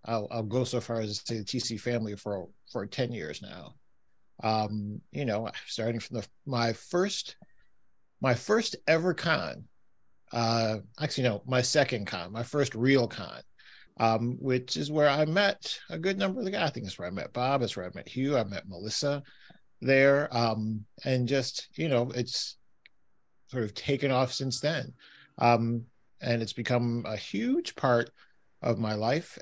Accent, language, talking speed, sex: American, English, 180 wpm, male